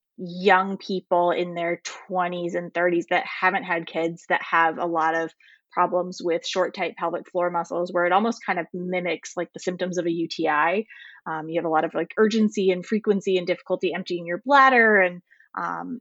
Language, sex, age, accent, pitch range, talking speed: English, female, 20-39, American, 170-190 Hz, 195 wpm